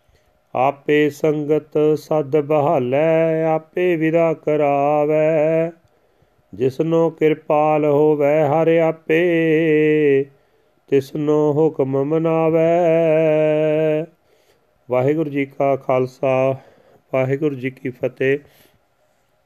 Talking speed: 70 wpm